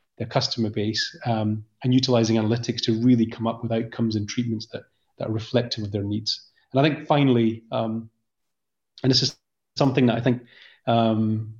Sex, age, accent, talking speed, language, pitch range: male, 30-49, British, 180 wpm, English, 115-130 Hz